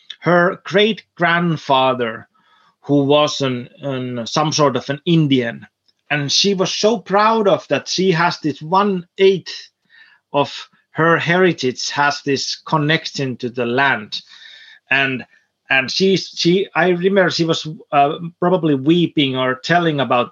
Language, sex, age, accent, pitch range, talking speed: Finnish, male, 30-49, native, 135-185 Hz, 140 wpm